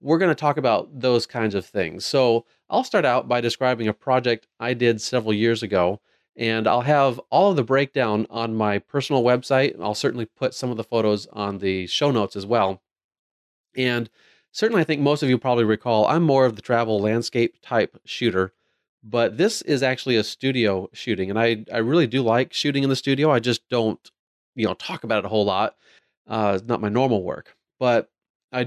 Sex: male